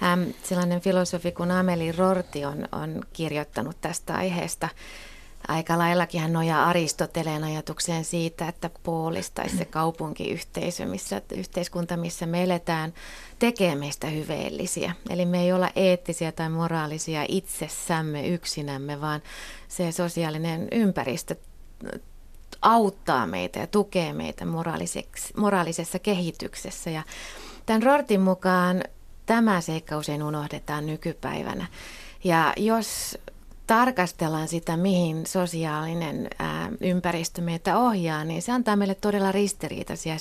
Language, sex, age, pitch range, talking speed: Finnish, female, 30-49, 155-190 Hz, 105 wpm